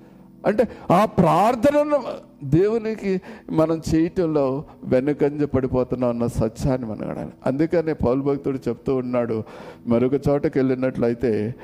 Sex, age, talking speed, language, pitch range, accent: male, 50-69, 105 wpm, Telugu, 110-160 Hz, native